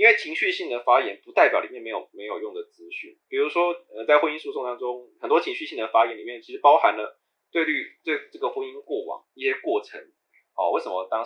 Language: Chinese